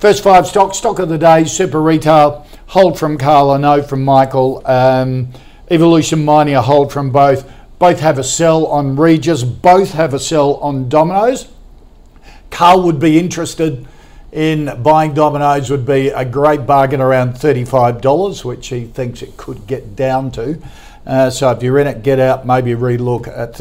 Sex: male